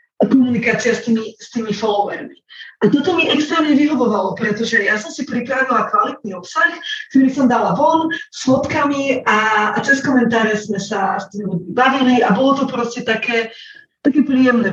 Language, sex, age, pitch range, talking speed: Slovak, female, 30-49, 215-265 Hz, 165 wpm